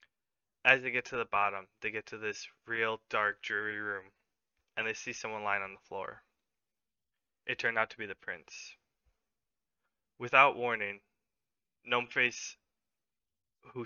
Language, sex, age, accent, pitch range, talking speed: English, male, 20-39, American, 105-125 Hz, 145 wpm